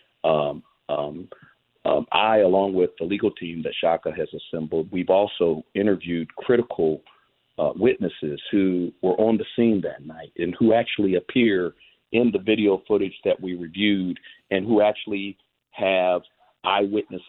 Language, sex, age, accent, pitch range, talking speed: English, male, 40-59, American, 95-110 Hz, 145 wpm